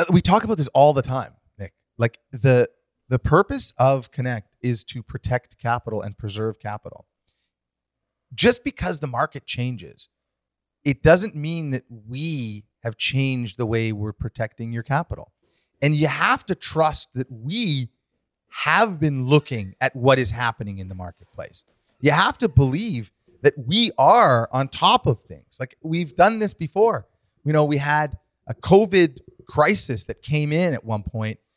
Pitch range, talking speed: 115-160 Hz, 160 wpm